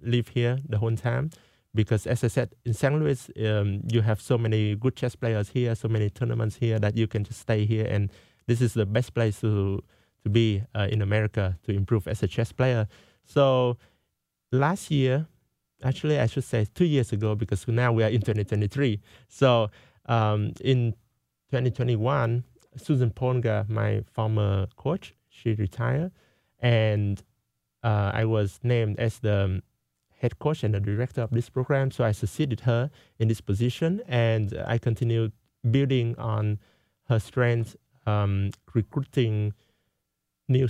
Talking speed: 165 wpm